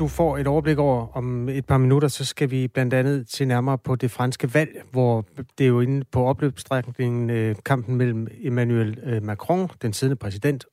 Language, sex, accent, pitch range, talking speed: Danish, male, native, 120-145 Hz, 190 wpm